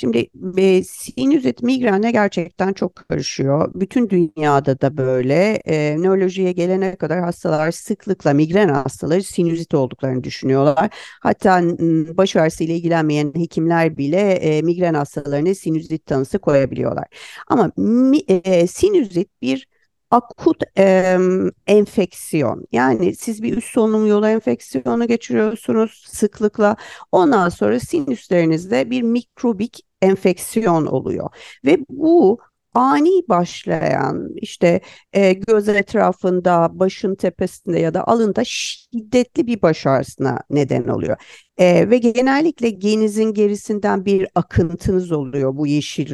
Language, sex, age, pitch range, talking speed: Turkish, female, 50-69, 160-220 Hz, 110 wpm